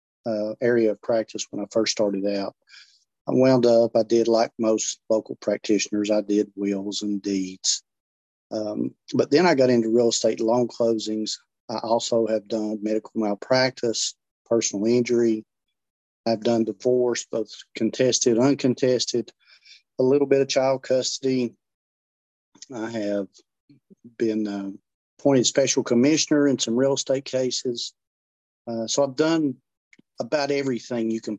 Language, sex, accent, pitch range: English, male, American, 105-125 Hz